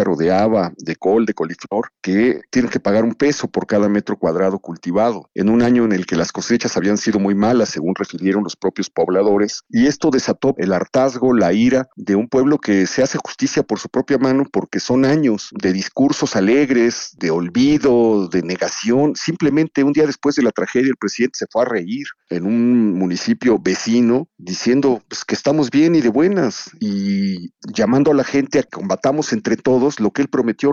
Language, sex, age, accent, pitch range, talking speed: Spanish, male, 50-69, Mexican, 100-140 Hz, 195 wpm